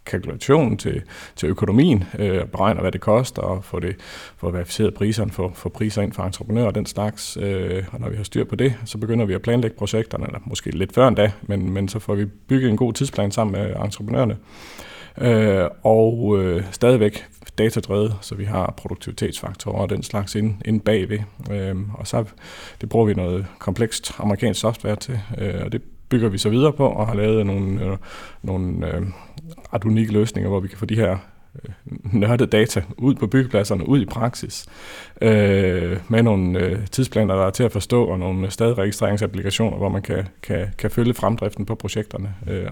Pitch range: 95-115 Hz